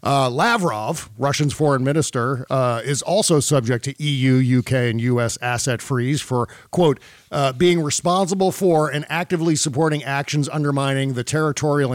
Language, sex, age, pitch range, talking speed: English, male, 50-69, 120-155 Hz, 145 wpm